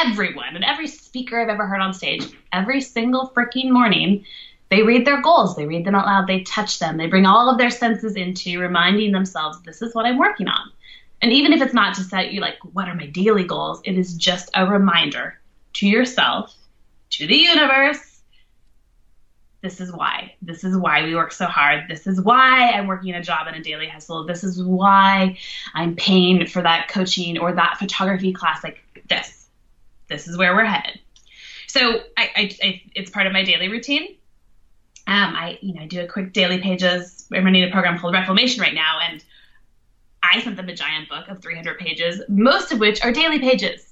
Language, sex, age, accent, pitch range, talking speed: English, female, 20-39, American, 175-230 Hz, 195 wpm